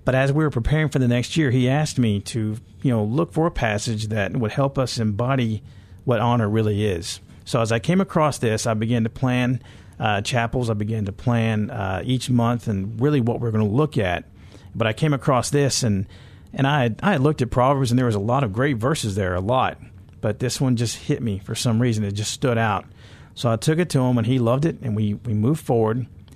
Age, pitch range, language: 50-69, 105-130 Hz, English